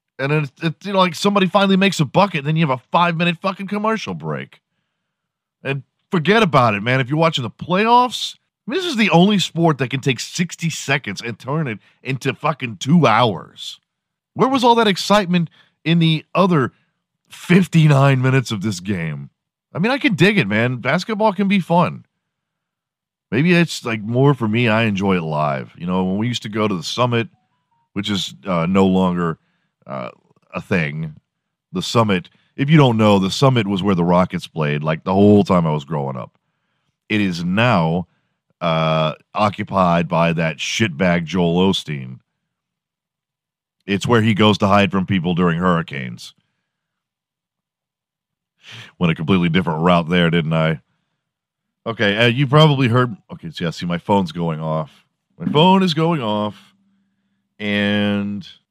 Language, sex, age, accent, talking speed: English, male, 40-59, American, 170 wpm